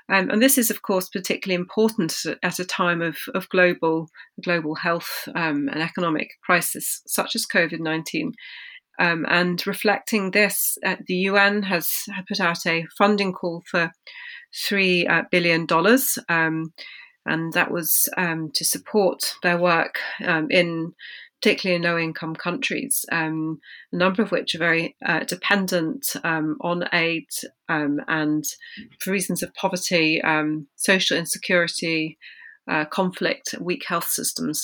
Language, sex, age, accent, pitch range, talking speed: English, female, 30-49, British, 165-200 Hz, 145 wpm